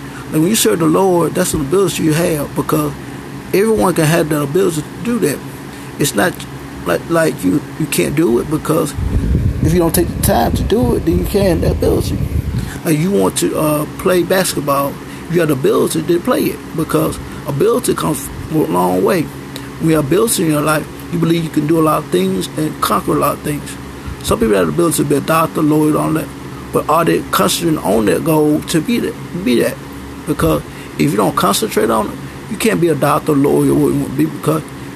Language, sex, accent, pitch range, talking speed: English, male, American, 140-165 Hz, 225 wpm